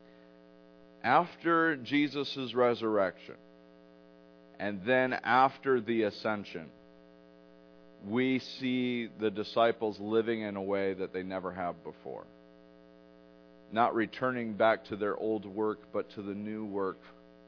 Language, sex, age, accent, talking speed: English, male, 40-59, American, 115 wpm